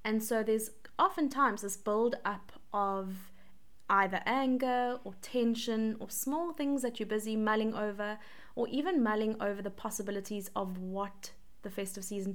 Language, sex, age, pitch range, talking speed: English, female, 20-39, 200-235 Hz, 150 wpm